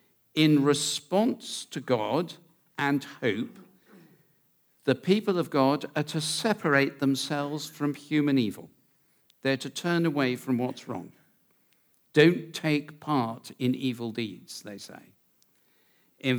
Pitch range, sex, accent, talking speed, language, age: 130-170 Hz, male, British, 120 wpm, English, 50-69